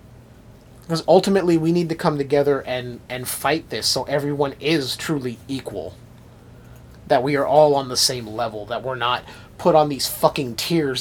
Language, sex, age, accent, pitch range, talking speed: English, male, 30-49, American, 120-165 Hz, 175 wpm